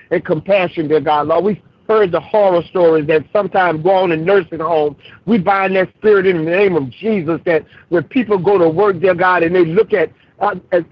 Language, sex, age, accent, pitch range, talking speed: English, male, 50-69, American, 150-195 Hz, 215 wpm